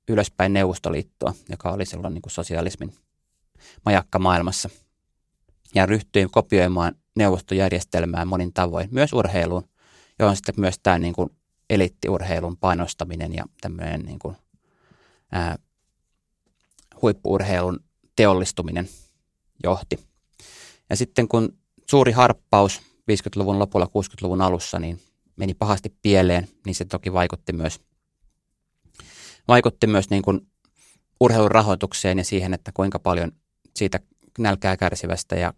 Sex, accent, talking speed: male, native, 105 wpm